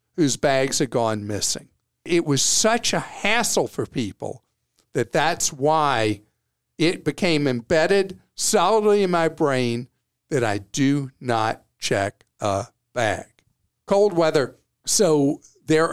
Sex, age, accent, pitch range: male, 50-69, American, 125-170 Hz